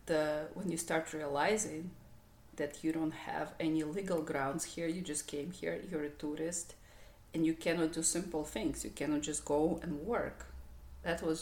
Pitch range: 145-170 Hz